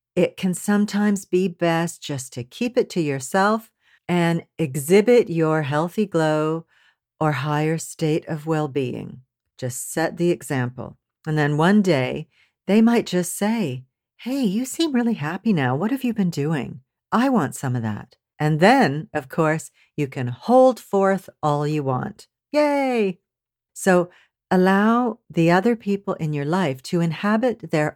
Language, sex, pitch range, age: English, female, 140-195 Hz, 50-69